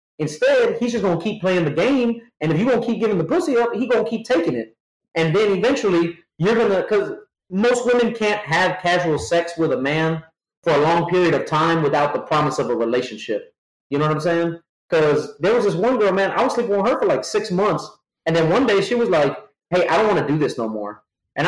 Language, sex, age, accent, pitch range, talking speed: English, male, 30-49, American, 170-235 Hz, 255 wpm